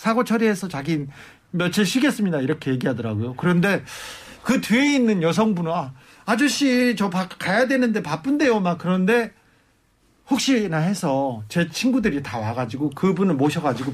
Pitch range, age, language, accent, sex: 140-210 Hz, 40-59, Korean, native, male